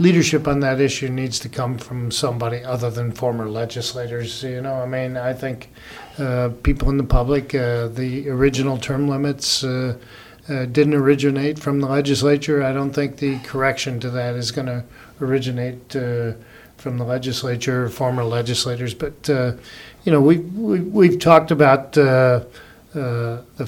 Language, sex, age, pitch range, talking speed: English, male, 40-59, 125-145 Hz, 165 wpm